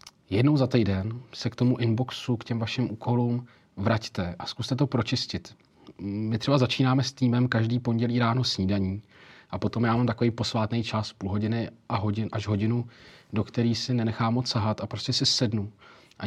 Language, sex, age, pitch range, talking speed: Czech, male, 40-59, 110-125 Hz, 175 wpm